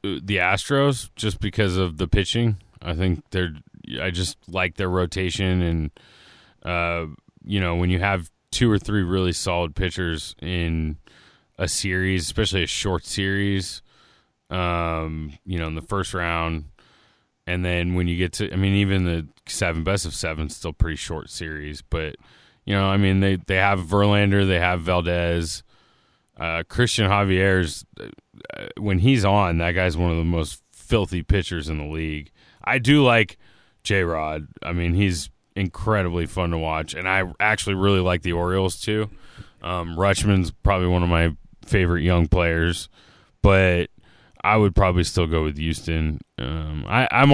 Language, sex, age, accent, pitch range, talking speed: English, male, 20-39, American, 85-100 Hz, 160 wpm